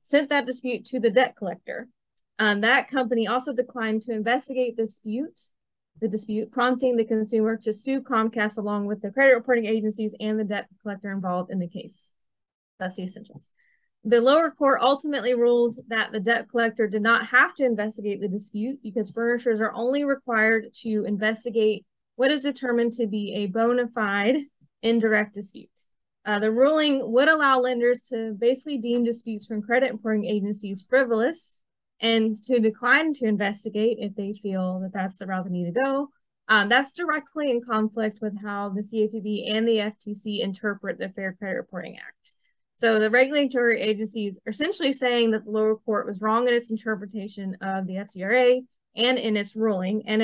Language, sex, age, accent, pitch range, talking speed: English, female, 20-39, American, 210-250 Hz, 175 wpm